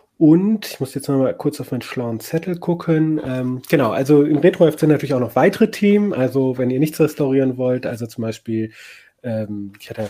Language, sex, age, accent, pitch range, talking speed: German, male, 30-49, German, 115-145 Hz, 210 wpm